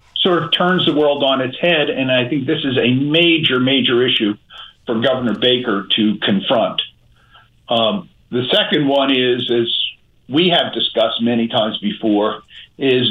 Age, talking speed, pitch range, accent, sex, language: 50-69, 160 wpm, 120-145 Hz, American, male, English